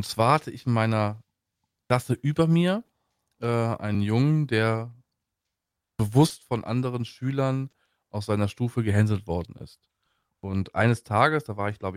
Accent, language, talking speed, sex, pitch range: German, German, 150 wpm, male, 105-135 Hz